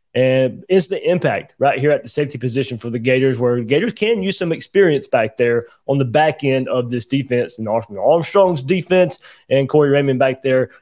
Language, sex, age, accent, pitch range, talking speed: English, male, 20-39, American, 135-185 Hz, 195 wpm